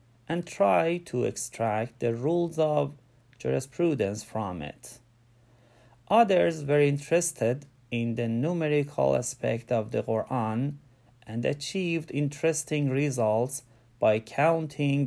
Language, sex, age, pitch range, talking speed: Persian, male, 30-49, 120-145 Hz, 105 wpm